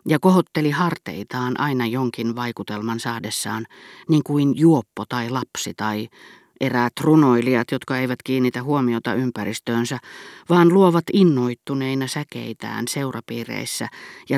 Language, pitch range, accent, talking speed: Finnish, 120-150 Hz, native, 110 wpm